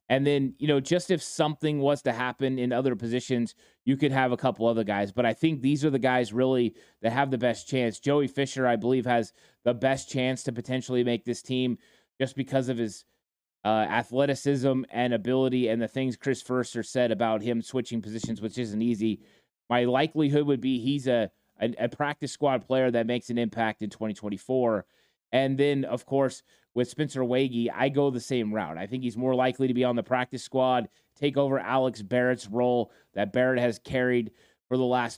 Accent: American